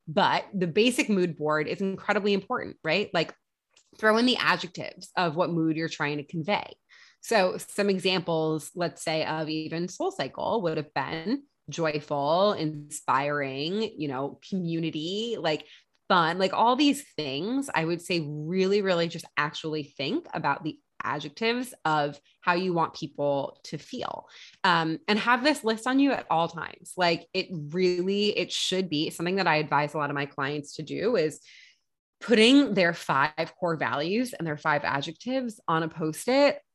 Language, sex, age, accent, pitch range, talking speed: English, female, 20-39, American, 155-210 Hz, 165 wpm